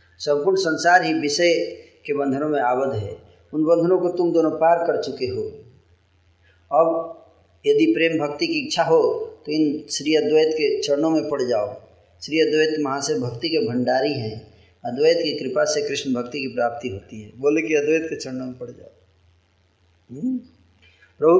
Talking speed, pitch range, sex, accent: 170 wpm, 130-175 Hz, male, native